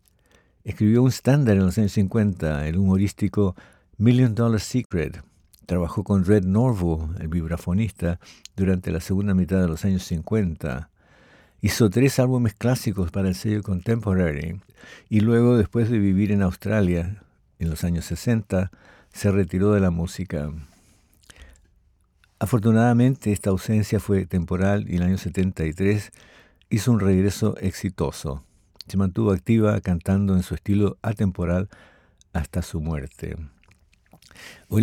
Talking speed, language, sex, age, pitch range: 130 wpm, Spanish, male, 60-79, 90-110 Hz